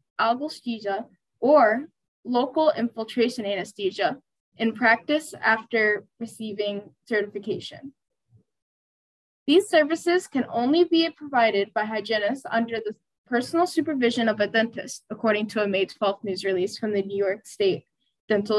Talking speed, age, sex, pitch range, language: 120 wpm, 10-29, female, 210-275 Hz, English